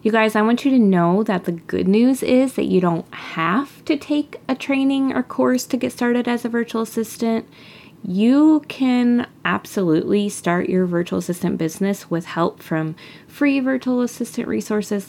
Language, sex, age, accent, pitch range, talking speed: English, female, 20-39, American, 180-235 Hz, 175 wpm